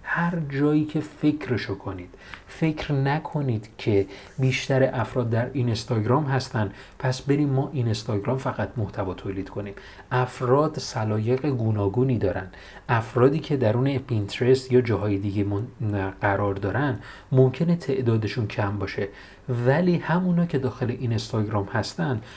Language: Persian